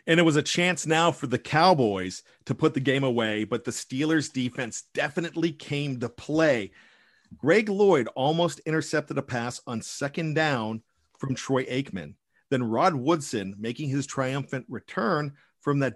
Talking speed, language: 160 wpm, English